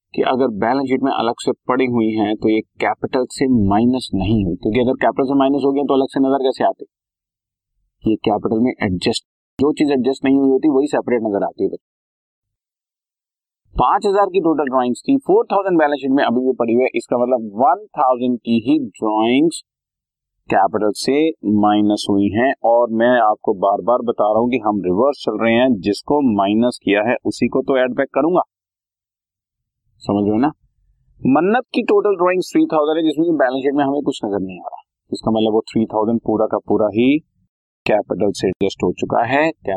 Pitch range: 105-140 Hz